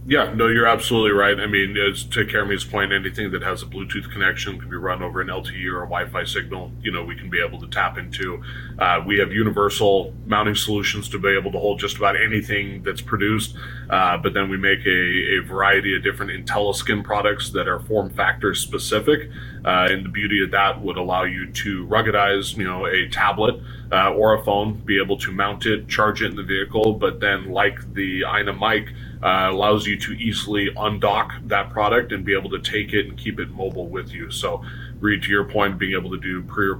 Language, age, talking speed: English, 30-49, 220 wpm